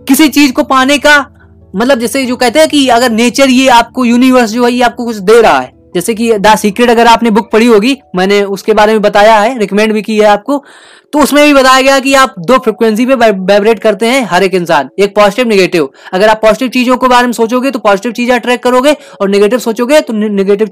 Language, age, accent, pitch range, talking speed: Hindi, 20-39, native, 210-255 Hz, 225 wpm